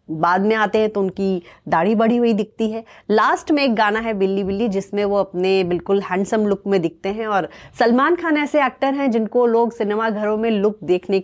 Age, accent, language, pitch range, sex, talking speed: 30-49, Indian, English, 195-240 Hz, female, 215 wpm